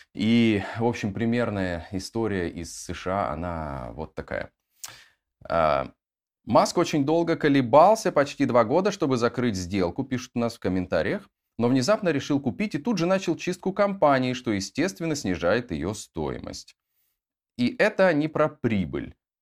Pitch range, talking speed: 100-140 Hz, 140 wpm